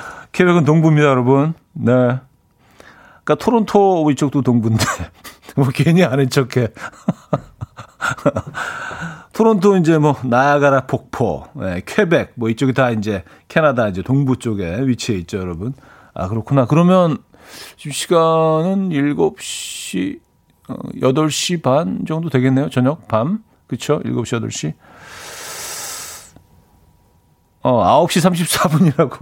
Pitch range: 125-170 Hz